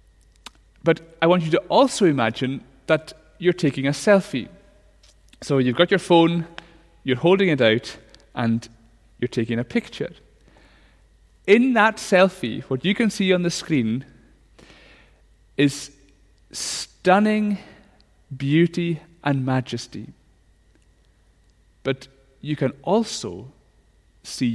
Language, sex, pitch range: English, male, 115-180 Hz